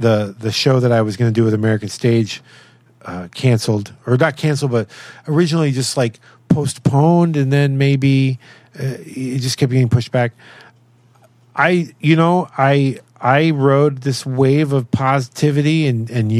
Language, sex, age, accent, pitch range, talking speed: English, male, 40-59, American, 115-135 Hz, 160 wpm